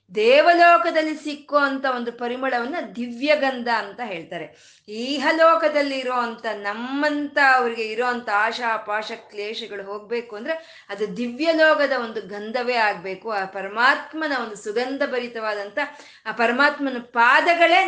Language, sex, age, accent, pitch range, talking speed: Kannada, female, 20-39, native, 215-275 Hz, 110 wpm